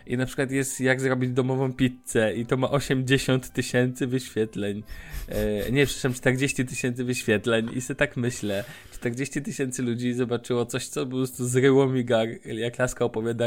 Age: 20-39